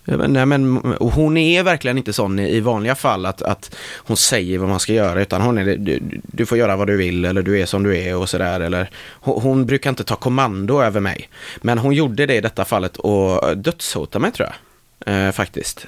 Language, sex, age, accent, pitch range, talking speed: Swedish, male, 30-49, native, 100-140 Hz, 220 wpm